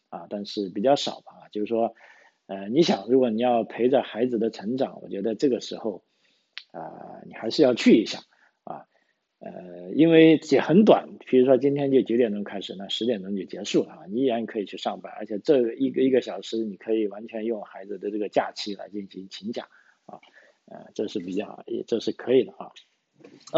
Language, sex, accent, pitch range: Chinese, male, native, 110-135 Hz